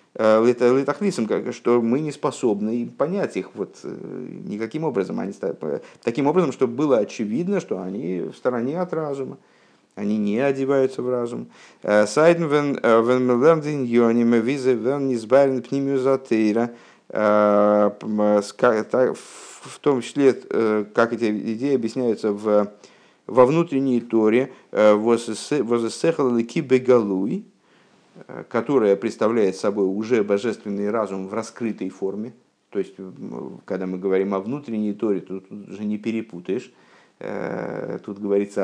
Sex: male